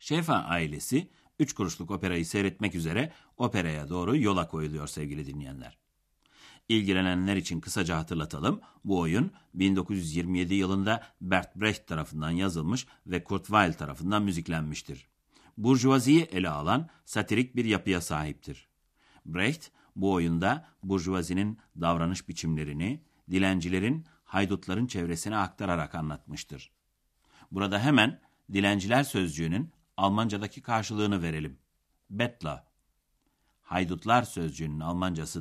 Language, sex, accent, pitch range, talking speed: Turkish, male, native, 85-115 Hz, 100 wpm